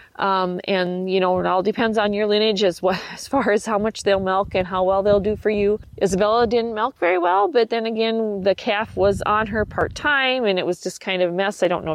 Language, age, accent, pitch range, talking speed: English, 40-59, American, 175-205 Hz, 255 wpm